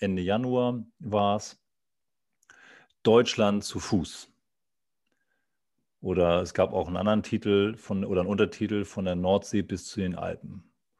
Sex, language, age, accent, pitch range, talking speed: male, German, 40-59, German, 100-115 Hz, 130 wpm